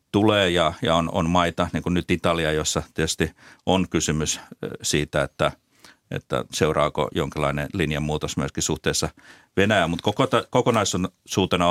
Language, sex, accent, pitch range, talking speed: Finnish, male, native, 80-95 Hz, 135 wpm